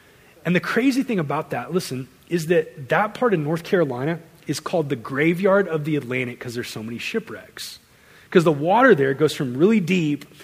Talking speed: 195 wpm